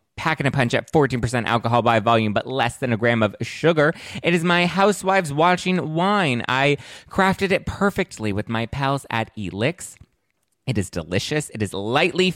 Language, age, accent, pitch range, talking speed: English, 20-39, American, 110-150 Hz, 175 wpm